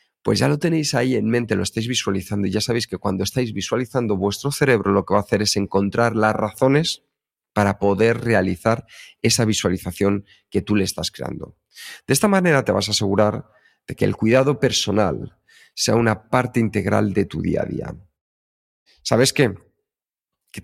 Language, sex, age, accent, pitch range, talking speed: Spanish, male, 40-59, Spanish, 100-130 Hz, 180 wpm